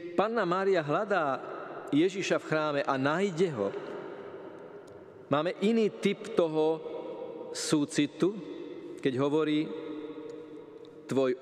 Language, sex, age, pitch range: Slovak, male, 40-59, 140-195 Hz